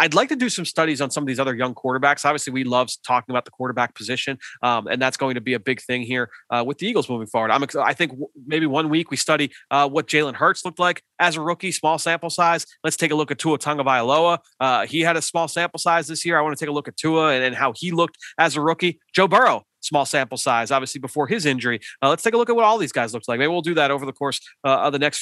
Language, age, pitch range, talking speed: English, 30-49, 135-175 Hz, 290 wpm